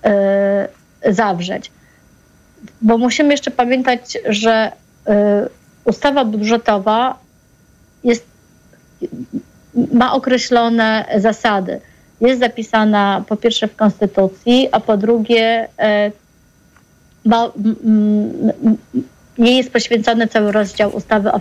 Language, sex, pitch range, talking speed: Polish, female, 210-245 Hz, 75 wpm